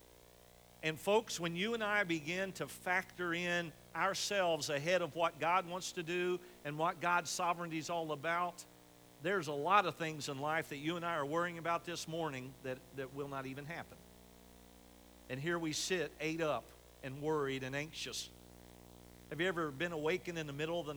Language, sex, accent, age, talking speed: English, male, American, 50-69, 190 wpm